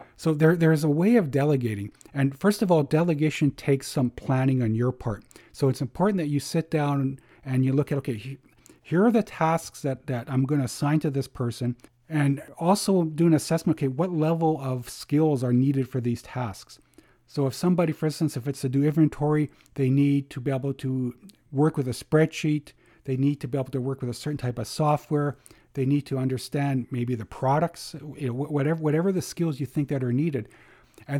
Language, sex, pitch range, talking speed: English, male, 130-160 Hz, 210 wpm